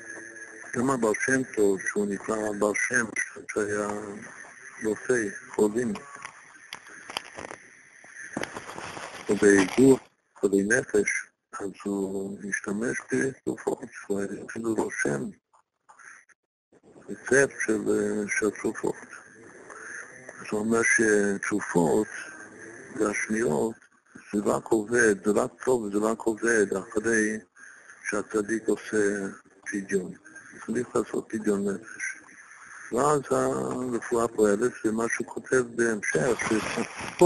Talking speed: 90 wpm